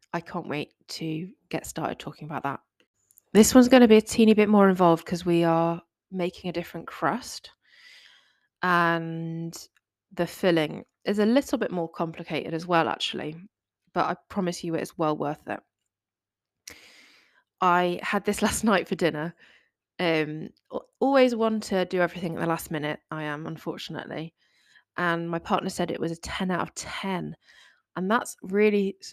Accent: British